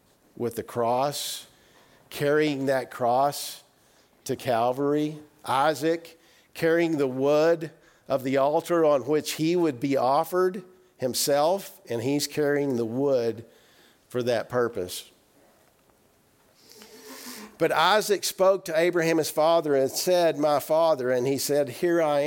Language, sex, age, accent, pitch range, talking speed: English, male, 50-69, American, 135-165 Hz, 125 wpm